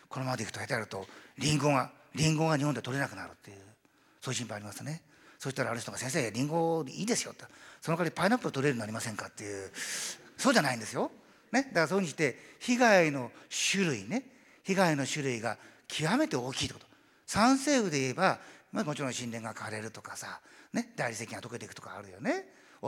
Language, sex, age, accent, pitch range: Japanese, male, 40-59, native, 115-170 Hz